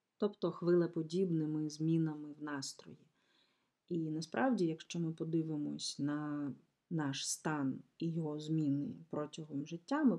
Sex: female